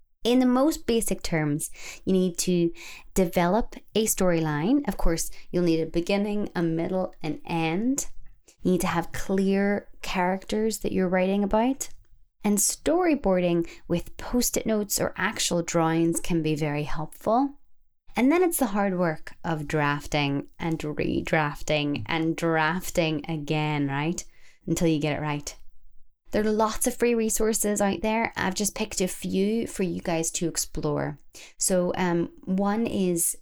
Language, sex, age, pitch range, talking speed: English, female, 20-39, 160-205 Hz, 150 wpm